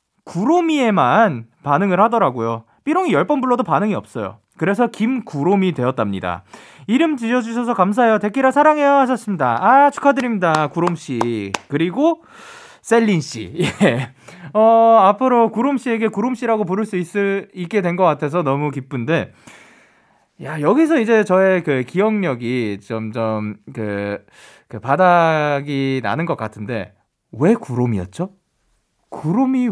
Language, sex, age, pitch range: Korean, male, 20-39, 140-230 Hz